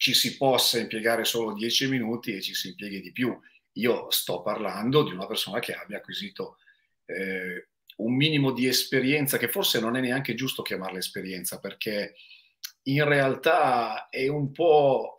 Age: 40-59